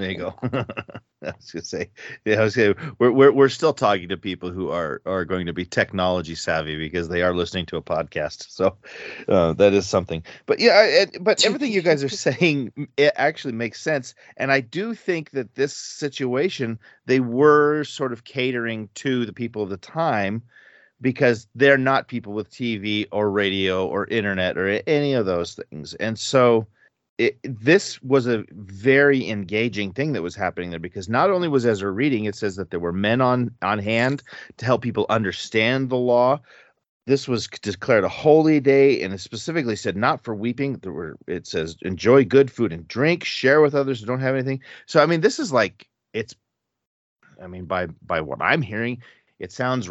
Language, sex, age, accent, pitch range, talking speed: English, male, 40-59, American, 100-135 Hz, 200 wpm